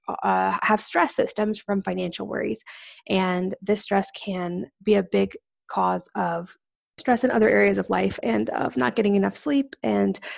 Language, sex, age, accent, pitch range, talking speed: English, female, 20-39, American, 185-225 Hz, 175 wpm